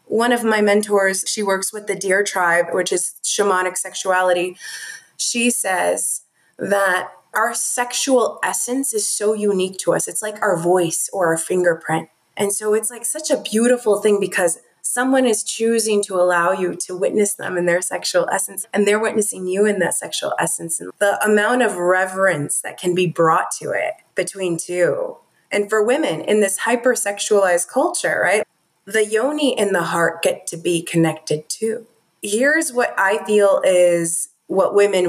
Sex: female